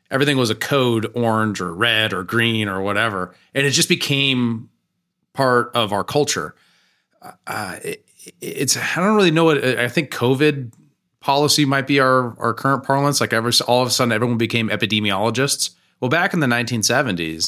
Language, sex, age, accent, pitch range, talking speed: English, male, 30-49, American, 105-135 Hz, 180 wpm